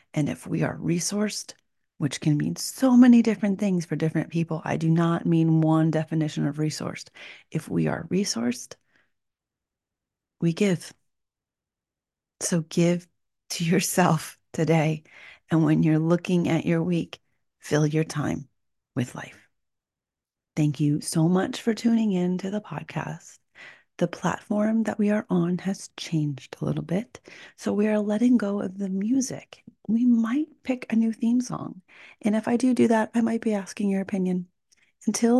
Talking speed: 160 wpm